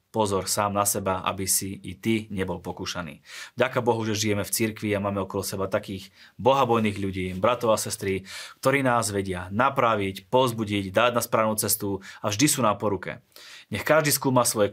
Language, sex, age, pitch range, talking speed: Slovak, male, 30-49, 100-120 Hz, 180 wpm